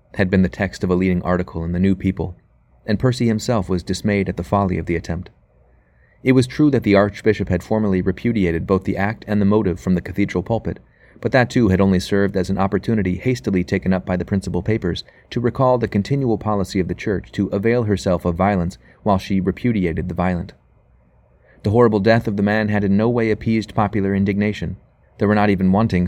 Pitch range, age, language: 90-105 Hz, 30-49, English